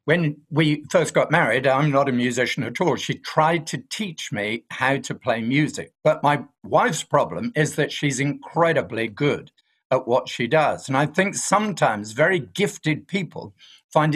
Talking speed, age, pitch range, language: 175 wpm, 50-69, 135-175 Hz, English